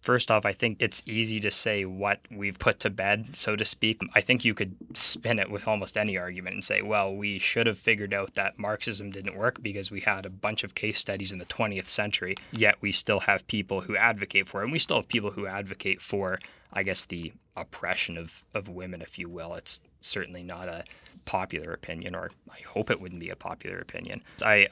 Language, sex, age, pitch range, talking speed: English, male, 20-39, 95-105 Hz, 225 wpm